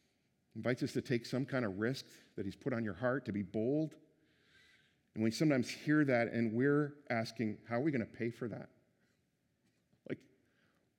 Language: English